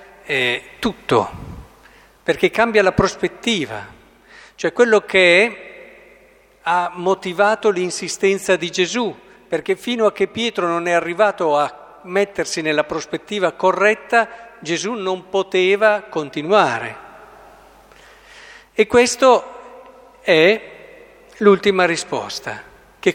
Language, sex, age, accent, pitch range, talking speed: Italian, male, 50-69, native, 160-220 Hz, 100 wpm